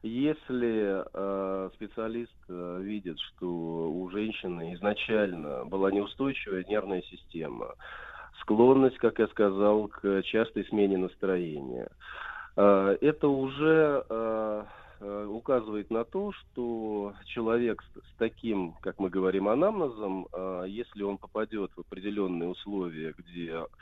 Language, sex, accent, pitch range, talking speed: Russian, male, native, 95-115 Hz, 110 wpm